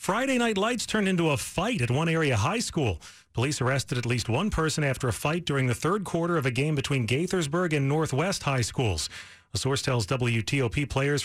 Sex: male